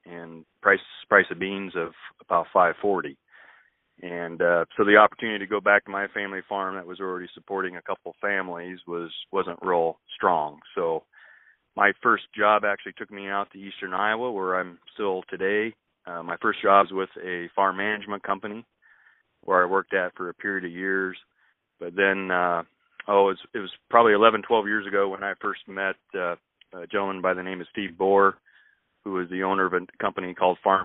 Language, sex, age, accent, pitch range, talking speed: English, male, 30-49, American, 90-100 Hz, 195 wpm